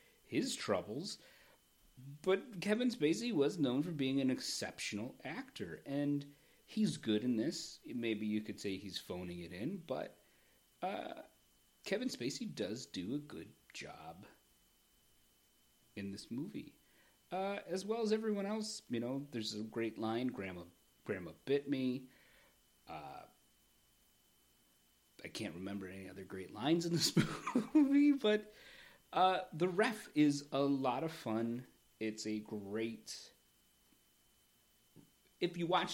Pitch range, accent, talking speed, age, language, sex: 105-175 Hz, American, 130 wpm, 40-59, English, male